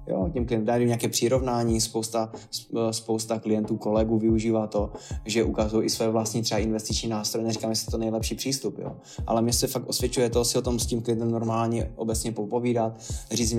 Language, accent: Czech, native